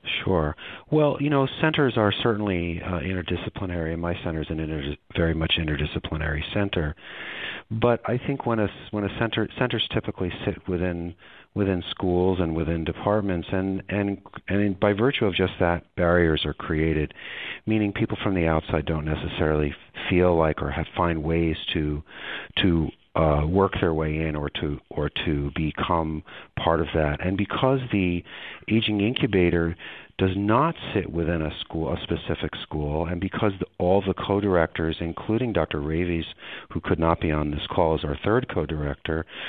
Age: 40-59